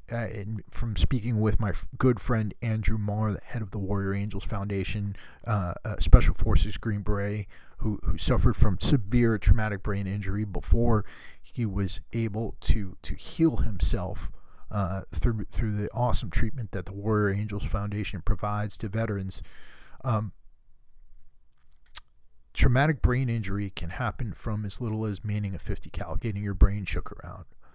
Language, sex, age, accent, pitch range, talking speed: English, male, 40-59, American, 95-120 Hz, 160 wpm